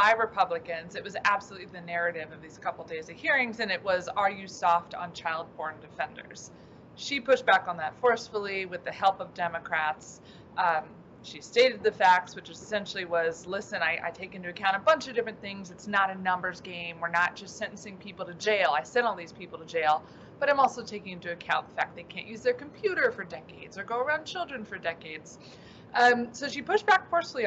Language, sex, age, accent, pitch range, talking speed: English, female, 30-49, American, 175-235 Hz, 215 wpm